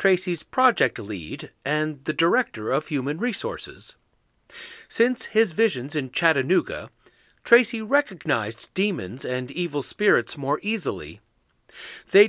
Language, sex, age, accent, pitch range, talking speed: English, male, 40-59, American, 145-210 Hz, 110 wpm